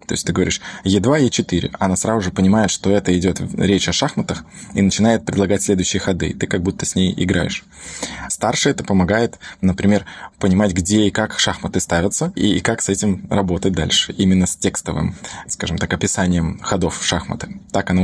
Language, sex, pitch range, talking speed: Russian, male, 95-110 Hz, 180 wpm